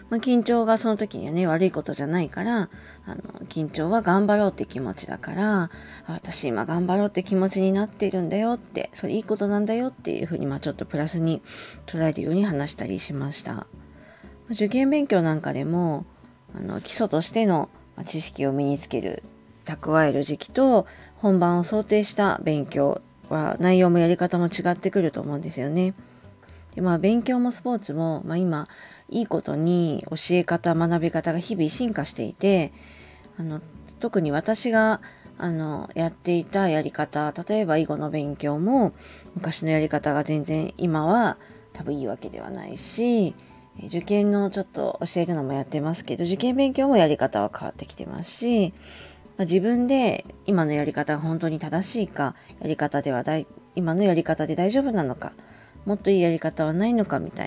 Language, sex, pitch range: Japanese, female, 155-205 Hz